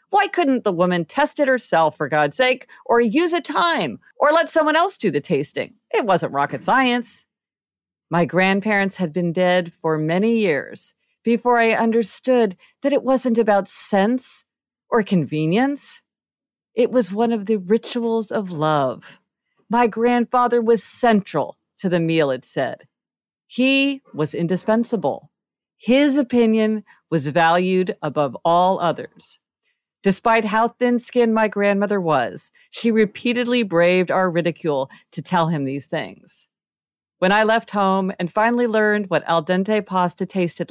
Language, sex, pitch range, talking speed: English, female, 175-235 Hz, 145 wpm